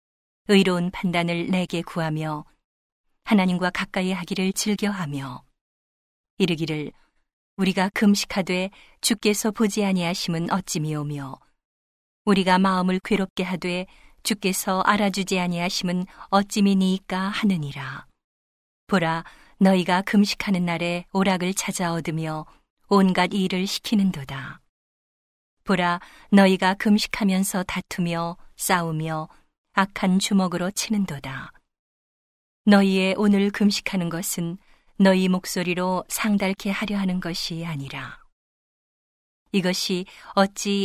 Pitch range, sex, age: 170-200 Hz, female, 40-59